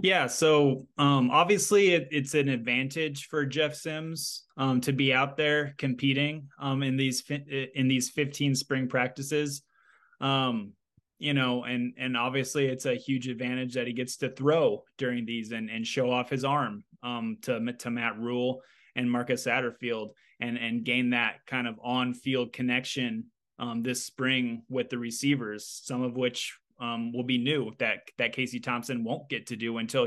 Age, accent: 20-39, American